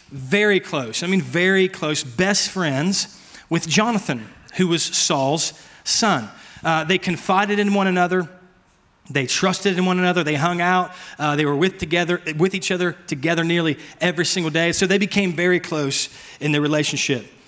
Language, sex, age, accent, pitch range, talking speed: English, male, 30-49, American, 145-185 Hz, 170 wpm